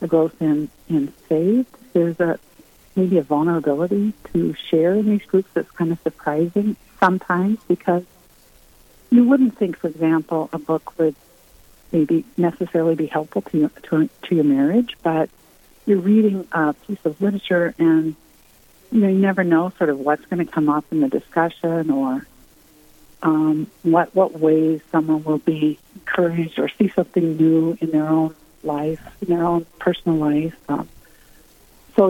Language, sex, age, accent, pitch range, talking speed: English, female, 60-79, American, 160-190 Hz, 160 wpm